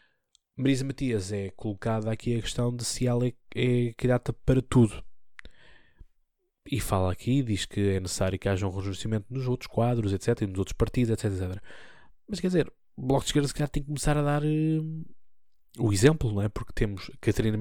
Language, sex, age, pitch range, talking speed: Portuguese, male, 20-39, 100-120 Hz, 195 wpm